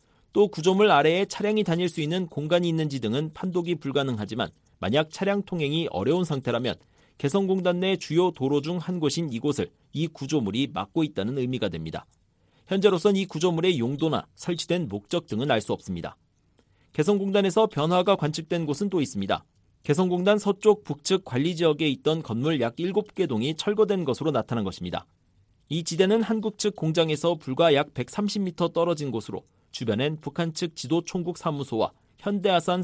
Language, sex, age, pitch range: Korean, male, 40-59, 140-190 Hz